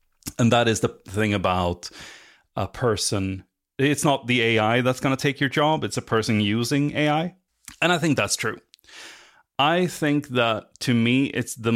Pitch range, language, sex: 95-120 Hz, English, male